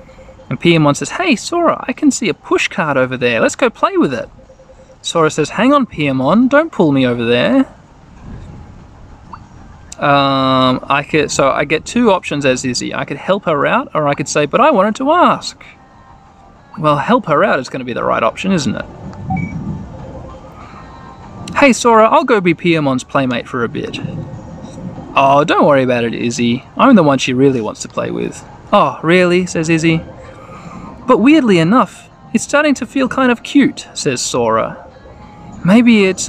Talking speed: 175 wpm